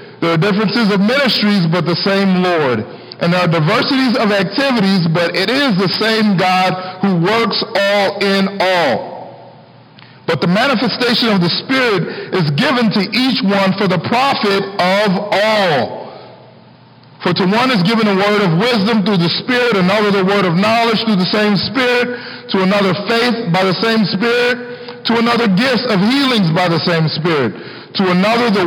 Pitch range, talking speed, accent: 180-220 Hz, 170 wpm, American